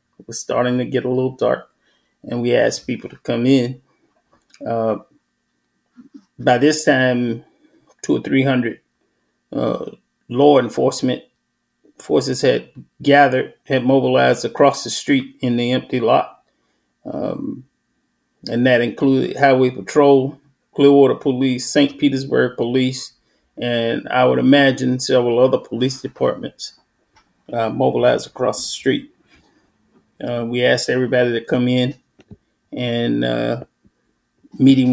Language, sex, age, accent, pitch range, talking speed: English, male, 30-49, American, 120-140 Hz, 125 wpm